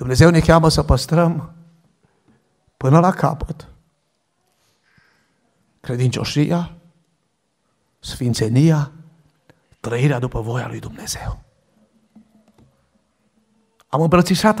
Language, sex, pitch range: Romanian, male, 125-165 Hz